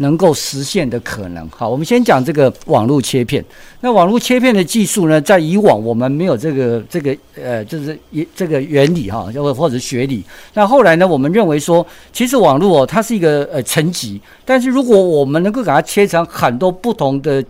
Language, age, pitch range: Chinese, 50-69, 135-200 Hz